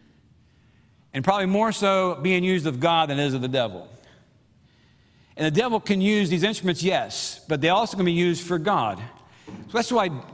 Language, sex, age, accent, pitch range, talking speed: English, male, 50-69, American, 150-190 Hz, 190 wpm